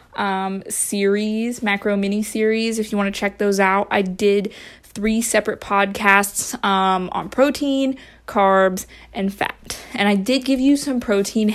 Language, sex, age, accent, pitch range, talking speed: English, female, 20-39, American, 205-240 Hz, 155 wpm